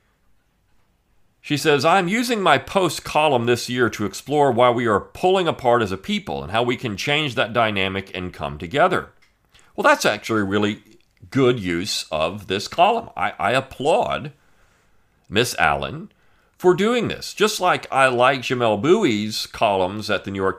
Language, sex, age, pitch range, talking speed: English, male, 40-59, 100-130 Hz, 165 wpm